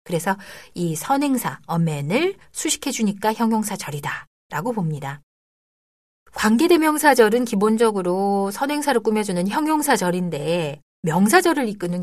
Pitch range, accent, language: 175-275 Hz, native, Korean